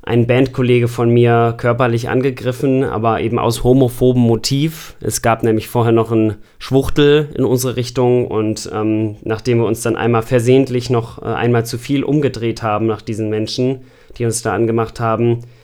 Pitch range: 115-130 Hz